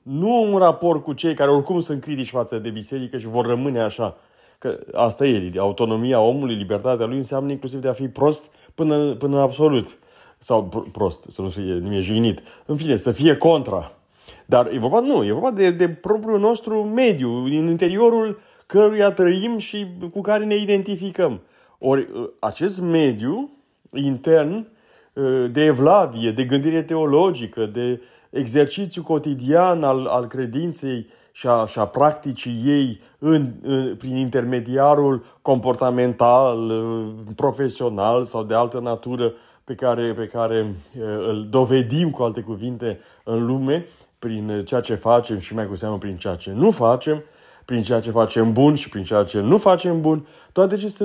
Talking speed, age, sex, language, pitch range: 150 wpm, 30-49, male, Romanian, 115-165 Hz